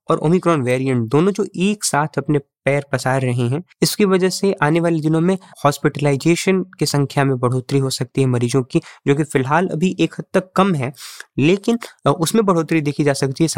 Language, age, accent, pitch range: Hindi, 20-39, native, 135-170 Hz